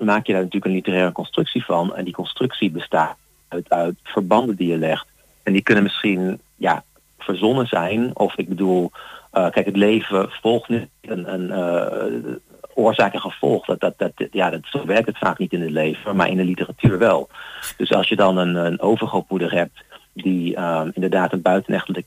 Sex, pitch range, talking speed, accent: male, 85-105 Hz, 175 wpm, Dutch